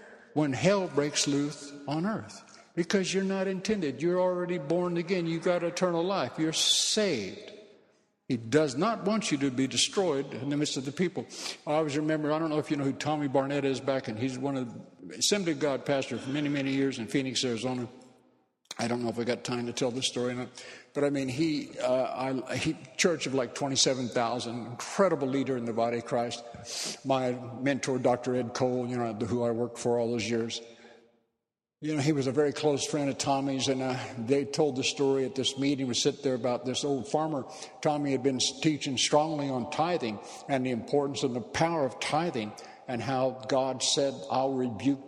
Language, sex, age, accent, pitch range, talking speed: English, male, 60-79, American, 130-160 Hz, 200 wpm